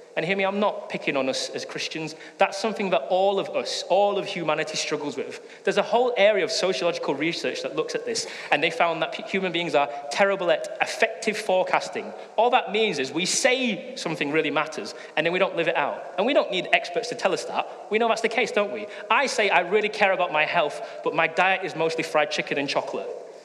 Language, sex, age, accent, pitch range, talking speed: English, male, 30-49, British, 170-255 Hz, 235 wpm